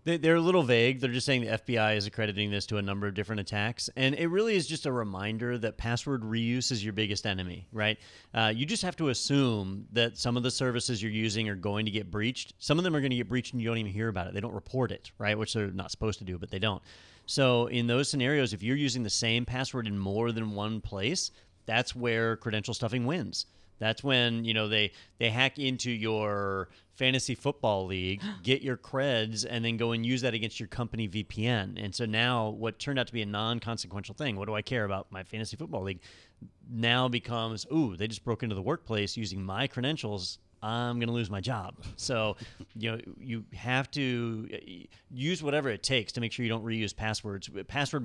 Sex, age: male, 30-49